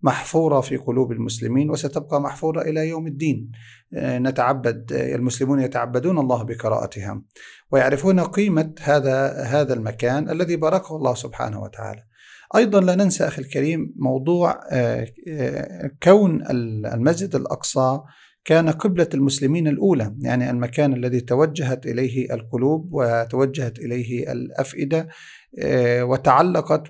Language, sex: Arabic, male